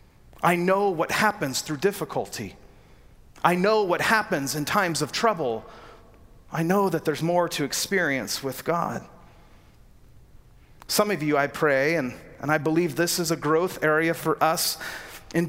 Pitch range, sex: 160-215 Hz, male